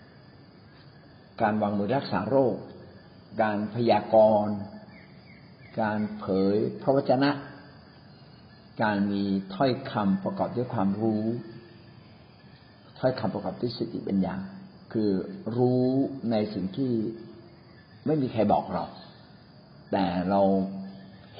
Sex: male